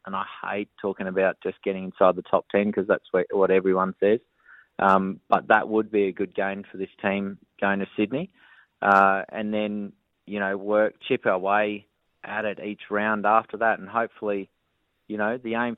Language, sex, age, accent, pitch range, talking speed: English, male, 30-49, Australian, 95-110 Hz, 195 wpm